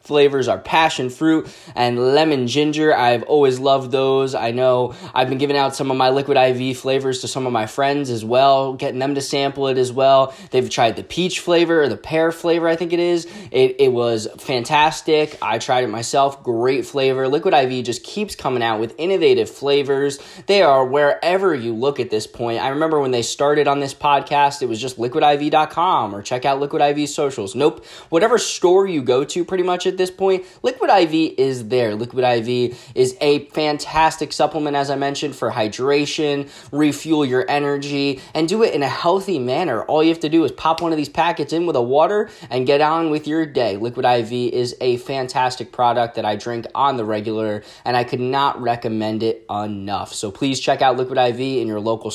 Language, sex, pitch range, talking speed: English, male, 125-155 Hz, 205 wpm